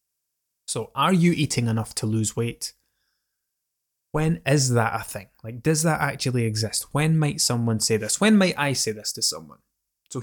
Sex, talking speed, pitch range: male, 180 wpm, 110-135 Hz